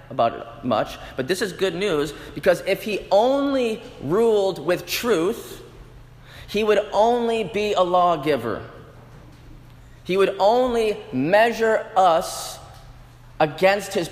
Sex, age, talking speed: male, 30-49, 115 wpm